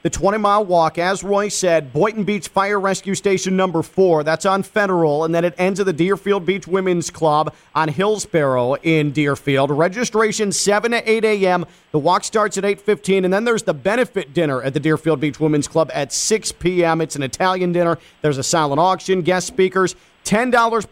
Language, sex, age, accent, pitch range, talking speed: English, male, 40-59, American, 160-200 Hz, 190 wpm